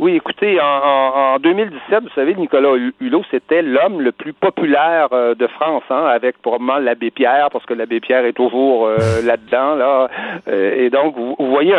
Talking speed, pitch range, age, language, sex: 175 wpm, 125-170 Hz, 50-69, French, male